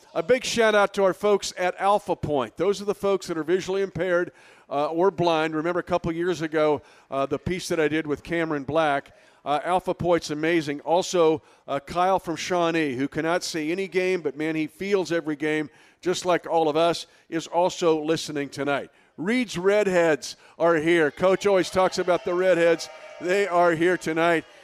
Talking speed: 190 wpm